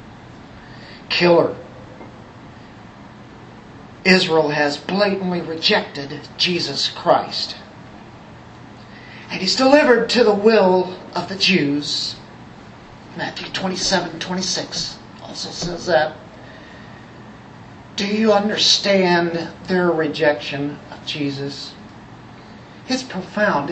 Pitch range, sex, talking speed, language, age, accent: 150-220 Hz, male, 75 wpm, English, 50-69, American